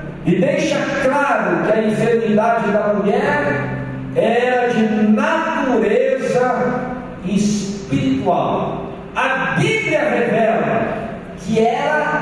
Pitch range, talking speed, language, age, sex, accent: 175-235 Hz, 85 wpm, Portuguese, 50-69, male, Brazilian